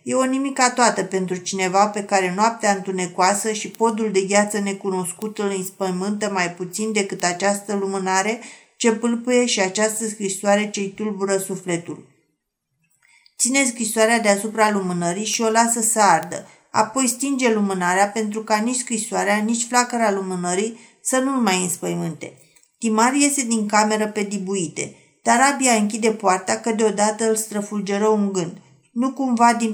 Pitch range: 195-225 Hz